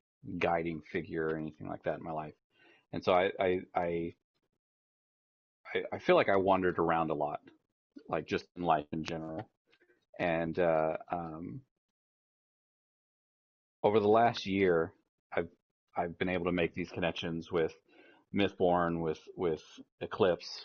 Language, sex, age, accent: English, male, 30-49, American